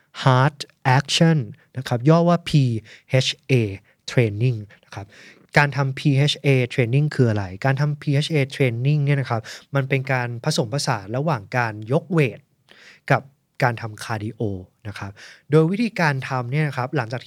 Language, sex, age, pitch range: Thai, male, 20-39, 125-155 Hz